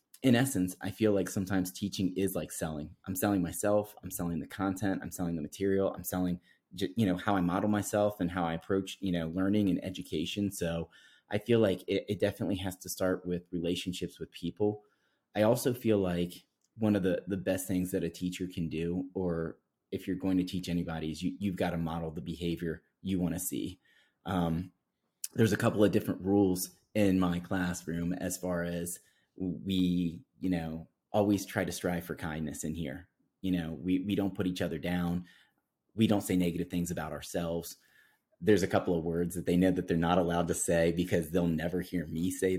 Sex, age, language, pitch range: male, 30-49, English, 85-95 Hz